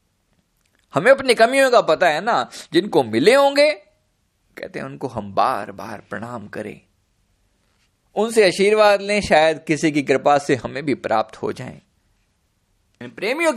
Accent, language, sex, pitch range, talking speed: native, Hindi, male, 140-225 Hz, 140 wpm